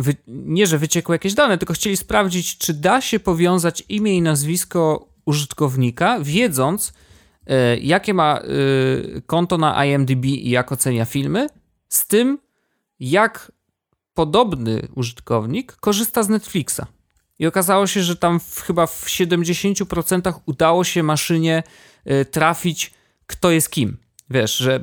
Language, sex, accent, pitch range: Polish, male, native, 125-170 Hz